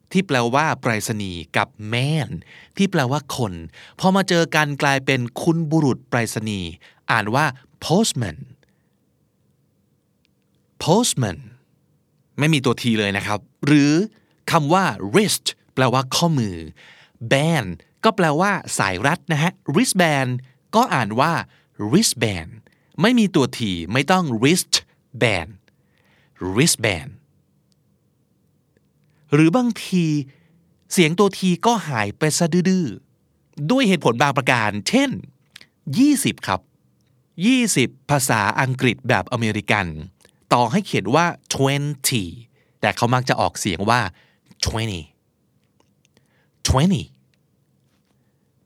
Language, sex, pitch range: Thai, male, 115-165 Hz